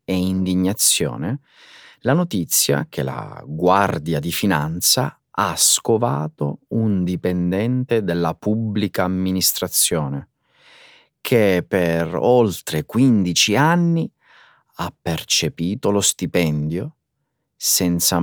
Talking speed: 80 wpm